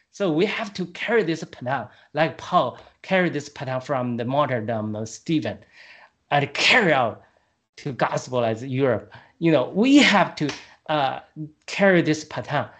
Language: Chinese